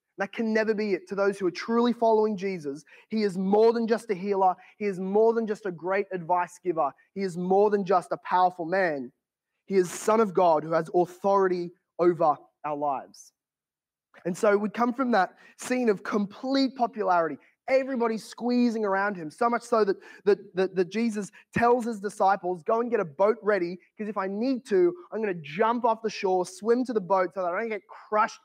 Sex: male